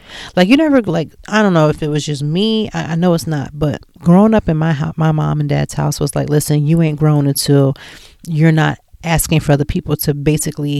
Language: English